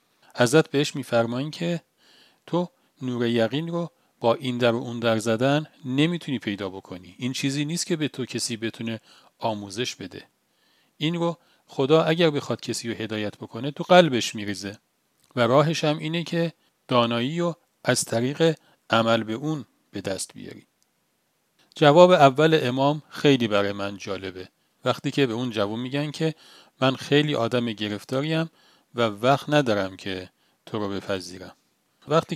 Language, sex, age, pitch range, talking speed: Persian, male, 40-59, 115-155 Hz, 150 wpm